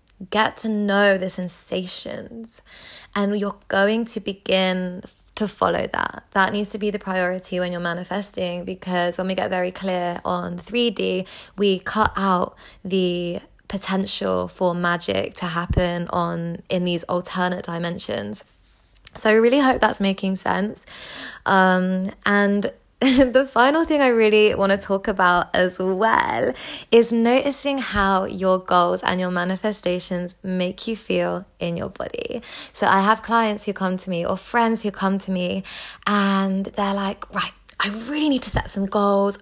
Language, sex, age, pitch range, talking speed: English, female, 20-39, 185-225 Hz, 155 wpm